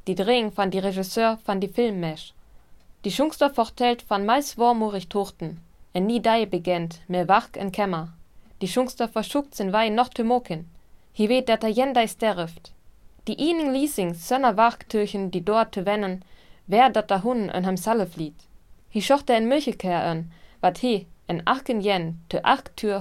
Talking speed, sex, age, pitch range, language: 165 wpm, female, 20-39, 175-230 Hz, German